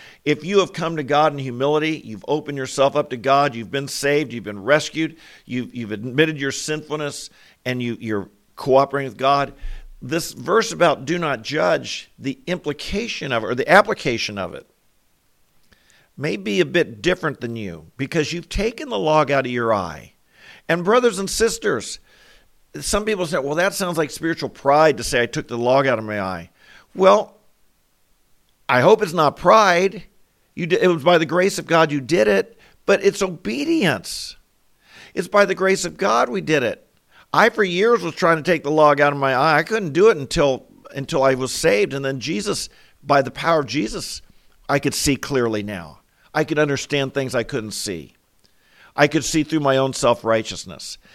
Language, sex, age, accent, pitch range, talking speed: English, male, 50-69, American, 125-165 Hz, 190 wpm